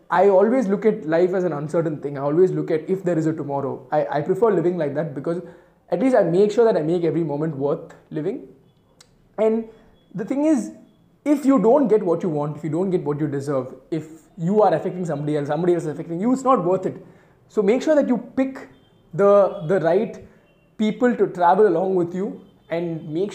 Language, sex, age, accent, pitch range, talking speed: Tamil, male, 20-39, native, 155-200 Hz, 225 wpm